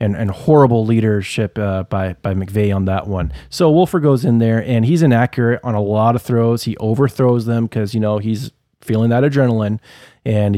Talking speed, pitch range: 200 wpm, 105-135 Hz